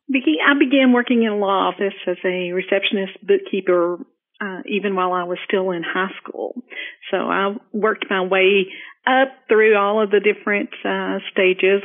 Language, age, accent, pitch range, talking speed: English, 50-69, American, 185-235 Hz, 165 wpm